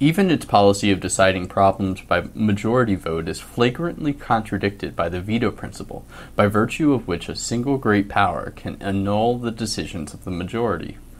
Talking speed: 165 wpm